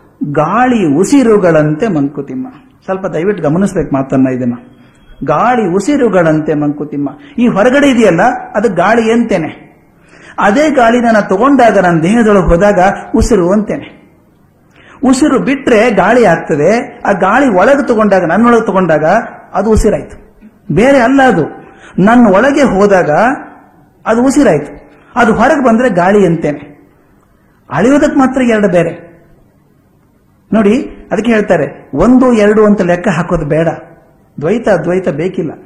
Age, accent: 50-69, native